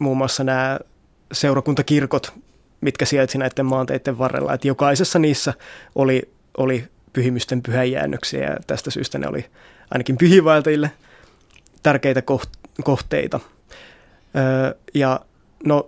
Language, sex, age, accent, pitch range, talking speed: Finnish, male, 20-39, native, 130-145 Hz, 110 wpm